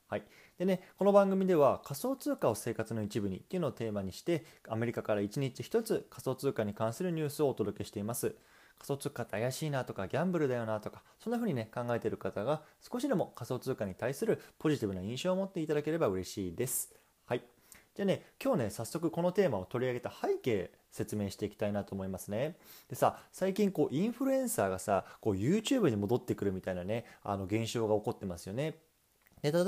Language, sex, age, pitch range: Japanese, male, 20-39, 105-160 Hz